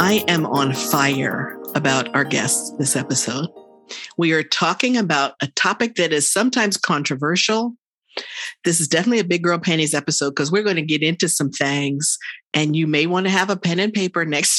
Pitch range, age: 150-195 Hz, 50-69